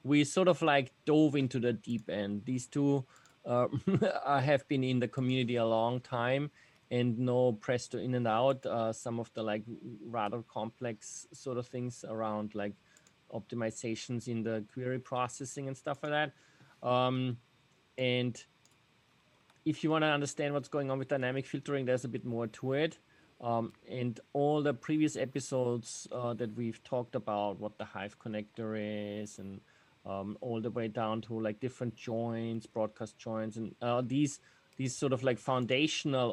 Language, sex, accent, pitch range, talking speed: English, male, German, 110-135 Hz, 170 wpm